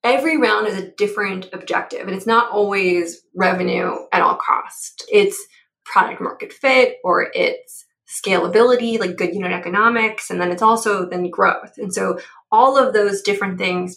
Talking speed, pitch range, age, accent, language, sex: 165 wpm, 185-230 Hz, 20-39, American, English, female